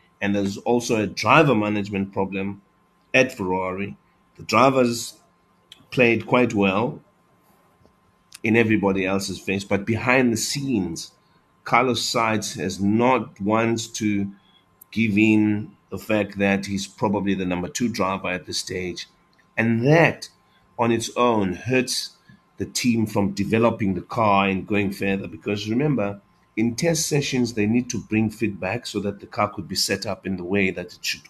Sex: male